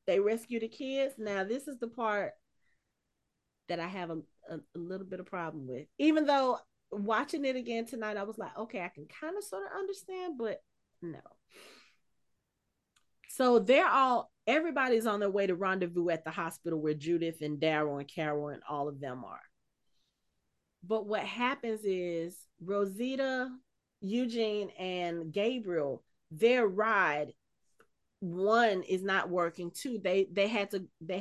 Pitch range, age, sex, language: 175-230 Hz, 30-49, female, English